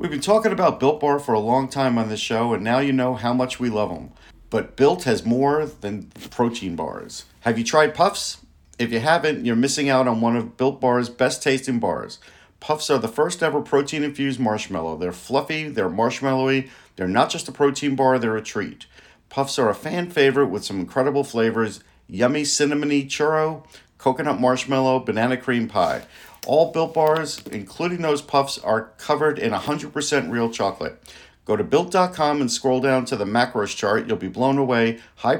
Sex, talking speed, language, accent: male, 190 wpm, English, American